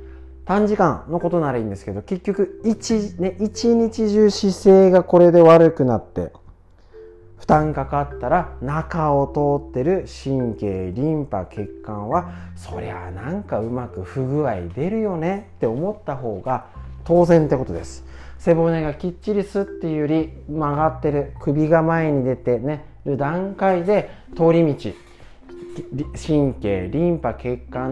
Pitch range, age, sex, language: 110-170 Hz, 40-59, male, Japanese